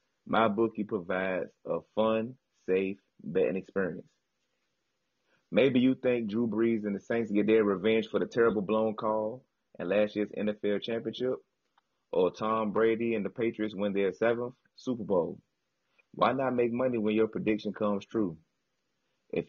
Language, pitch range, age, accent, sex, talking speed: English, 95-115 Hz, 30-49, American, male, 155 wpm